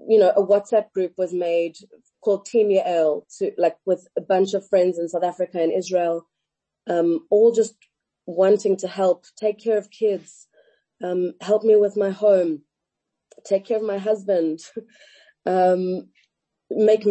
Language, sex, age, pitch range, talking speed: English, female, 30-49, 170-210 Hz, 160 wpm